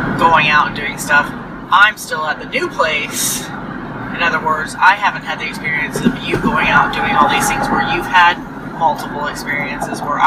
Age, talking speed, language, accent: 30-49, 200 wpm, English, American